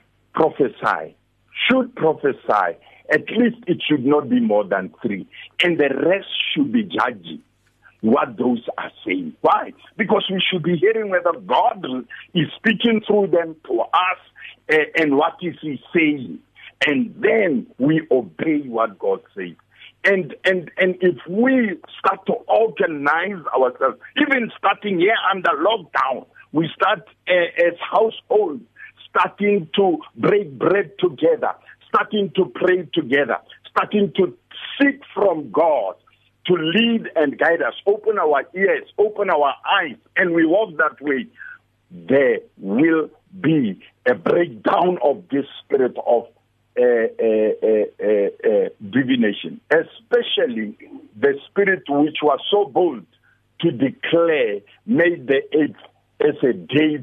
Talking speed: 135 wpm